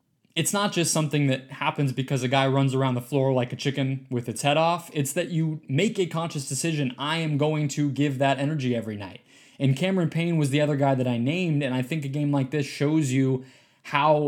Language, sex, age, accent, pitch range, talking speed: English, male, 20-39, American, 125-150 Hz, 235 wpm